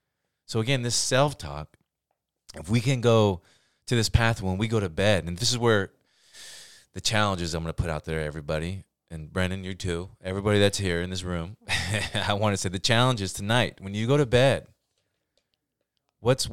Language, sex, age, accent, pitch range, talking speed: English, male, 30-49, American, 90-110 Hz, 190 wpm